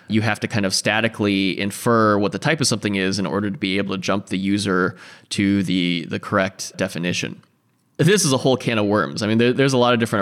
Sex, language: male, English